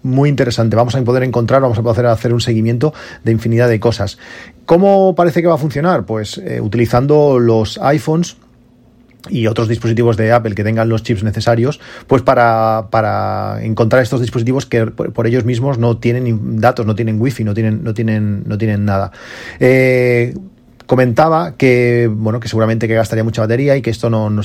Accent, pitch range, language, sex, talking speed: Spanish, 110-130 Hz, Spanish, male, 175 wpm